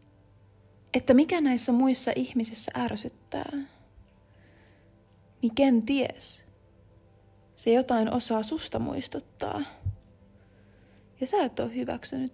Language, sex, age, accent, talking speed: Finnish, female, 20-39, native, 90 wpm